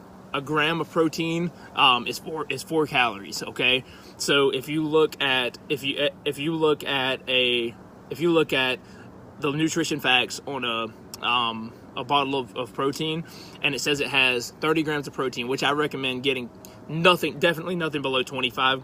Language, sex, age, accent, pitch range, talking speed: English, male, 20-39, American, 130-155 Hz, 180 wpm